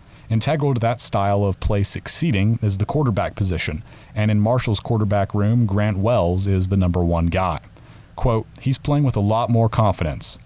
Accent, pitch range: American, 95-120 Hz